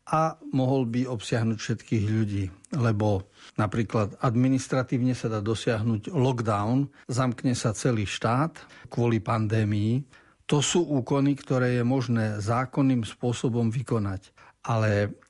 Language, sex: Slovak, male